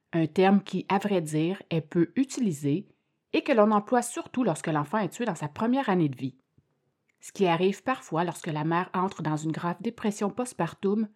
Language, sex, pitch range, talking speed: French, female, 165-225 Hz, 200 wpm